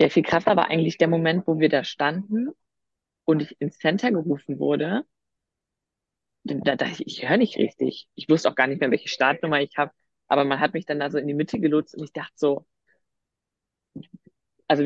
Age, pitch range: 30-49, 145-175 Hz